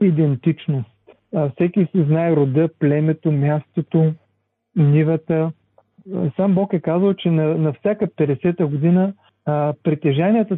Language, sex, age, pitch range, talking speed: Bulgarian, male, 40-59, 150-185 Hz, 115 wpm